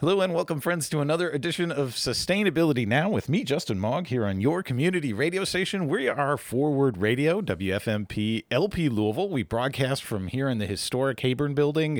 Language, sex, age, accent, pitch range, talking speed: English, male, 40-59, American, 100-150 Hz, 180 wpm